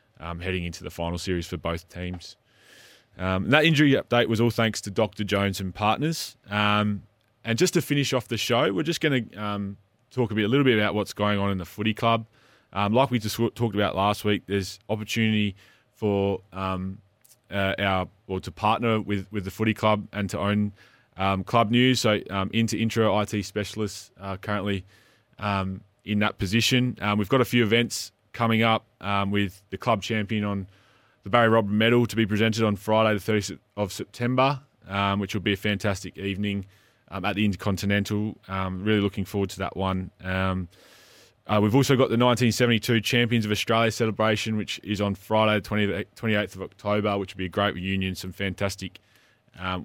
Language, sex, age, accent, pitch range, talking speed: English, male, 20-39, Australian, 95-115 Hz, 190 wpm